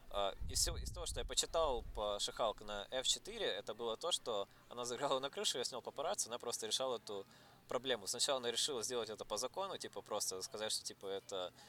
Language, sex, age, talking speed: Russian, male, 20-39, 205 wpm